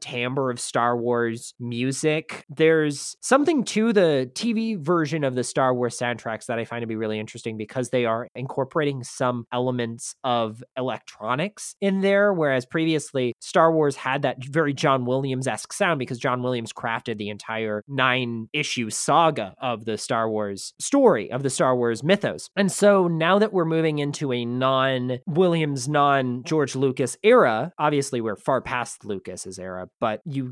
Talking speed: 165 wpm